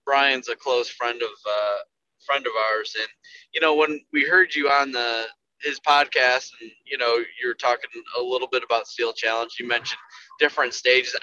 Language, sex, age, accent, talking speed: English, male, 20-39, American, 185 wpm